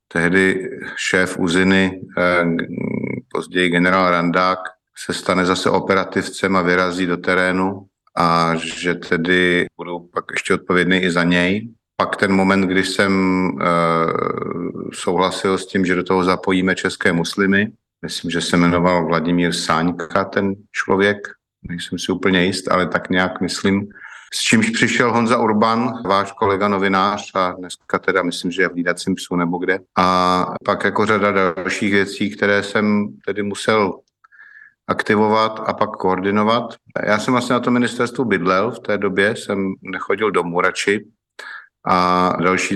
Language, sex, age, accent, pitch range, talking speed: Czech, male, 50-69, native, 90-100 Hz, 140 wpm